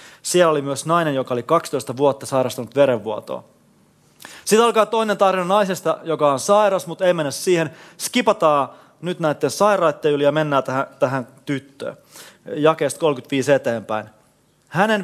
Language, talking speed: Finnish, 145 wpm